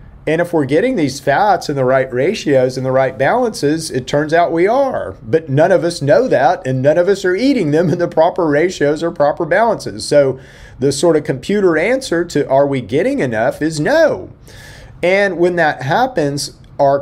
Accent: American